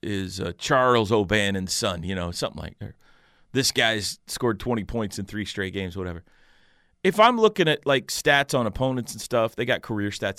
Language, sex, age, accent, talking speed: English, male, 30-49, American, 195 wpm